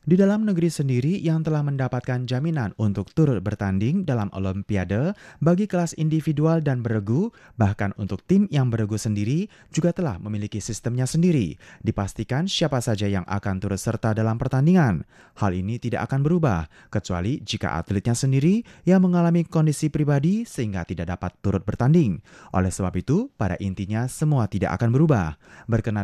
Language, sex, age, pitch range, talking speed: German, male, 30-49, 100-160 Hz, 150 wpm